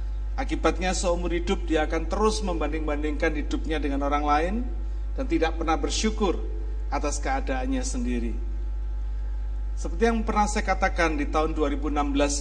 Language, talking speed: Indonesian, 125 wpm